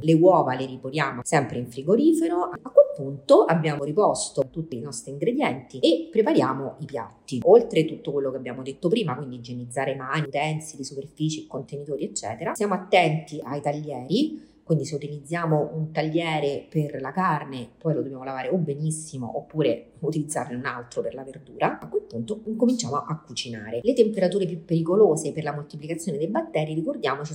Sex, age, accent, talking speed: female, 30-49, native, 165 wpm